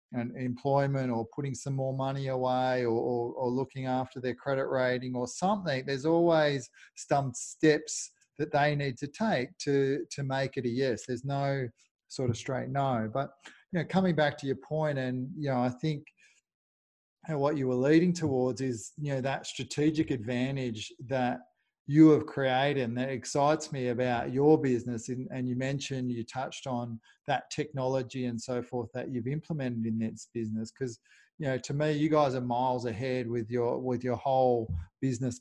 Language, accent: English, Australian